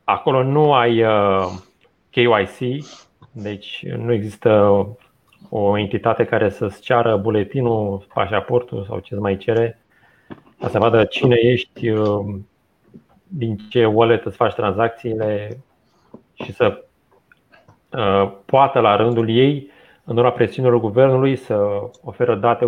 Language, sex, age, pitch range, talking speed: Romanian, male, 30-49, 105-135 Hz, 110 wpm